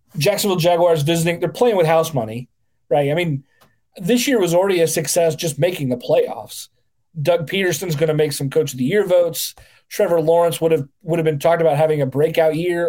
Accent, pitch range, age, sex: American, 145-195 Hz, 30-49, male